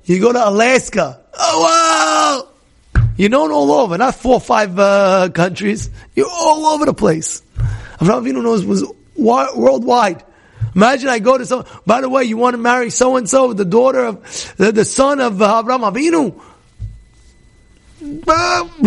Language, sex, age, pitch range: English, male, 30-49, 185-275 Hz